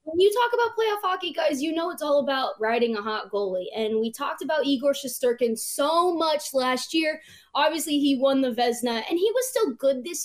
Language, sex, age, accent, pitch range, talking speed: English, female, 20-39, American, 220-285 Hz, 215 wpm